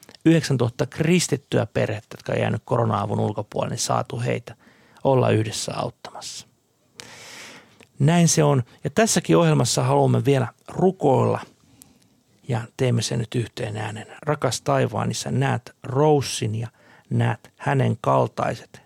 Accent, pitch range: native, 115-145 Hz